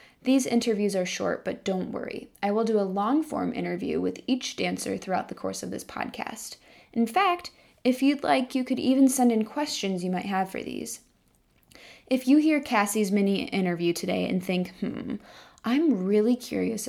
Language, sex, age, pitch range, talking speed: English, female, 10-29, 200-245 Hz, 180 wpm